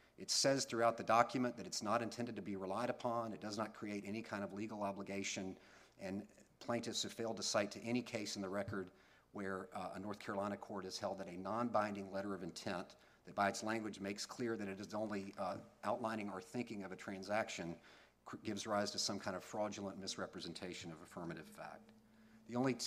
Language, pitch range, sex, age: English, 100-120 Hz, male, 40-59